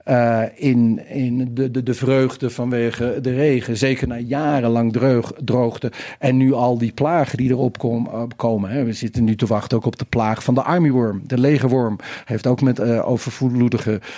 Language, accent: Dutch, Dutch